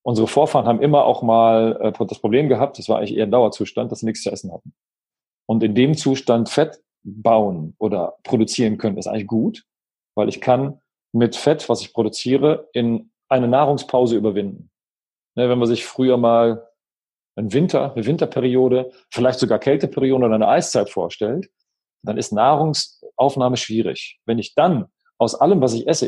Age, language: 40-59, German